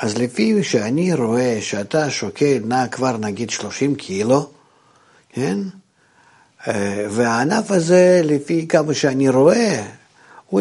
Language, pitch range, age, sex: Hebrew, 115-165 Hz, 50-69, male